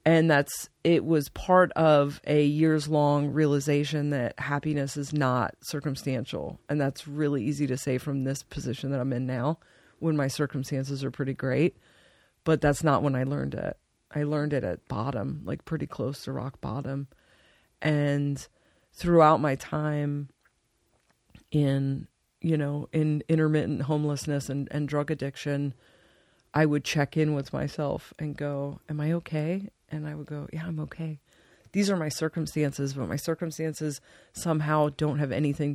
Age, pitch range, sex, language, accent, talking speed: 40-59, 140-155 Hz, female, English, American, 160 wpm